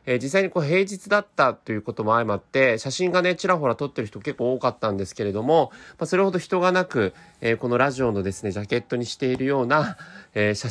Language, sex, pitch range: Japanese, male, 105-155 Hz